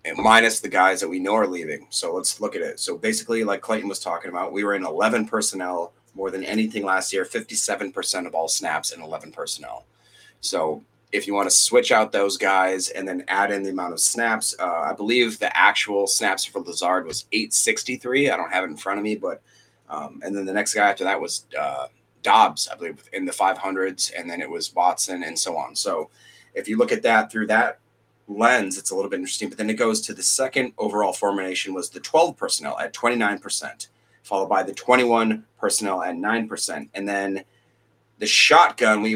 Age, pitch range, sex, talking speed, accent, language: 30-49, 95-115 Hz, male, 215 wpm, American, English